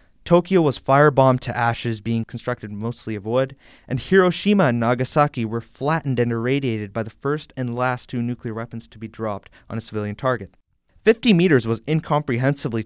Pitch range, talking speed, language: 115-145 Hz, 175 wpm, English